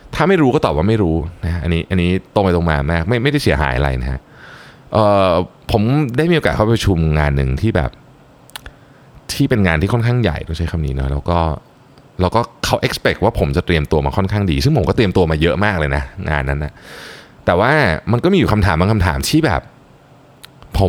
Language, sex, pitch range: Thai, male, 80-115 Hz